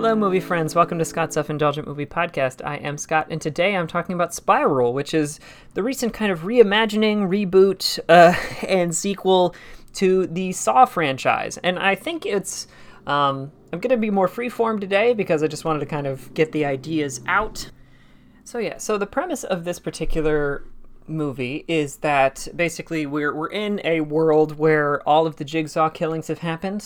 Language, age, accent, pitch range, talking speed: English, 30-49, American, 140-175 Hz, 180 wpm